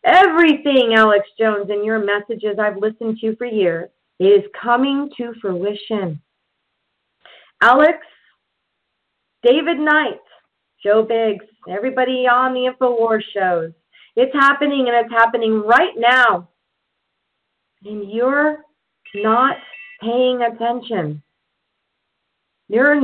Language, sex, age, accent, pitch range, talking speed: English, female, 40-59, American, 205-265 Hz, 100 wpm